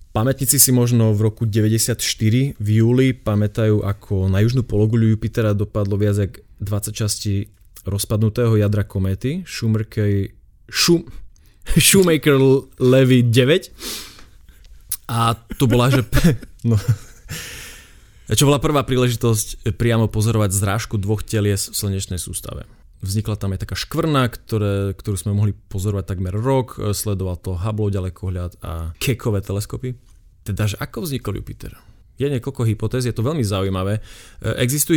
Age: 20-39